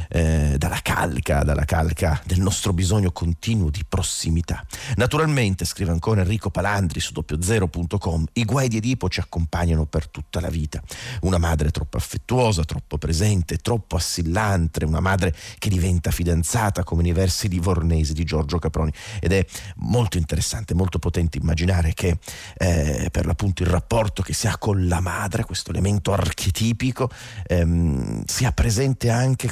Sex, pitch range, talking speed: male, 85-105 Hz, 150 wpm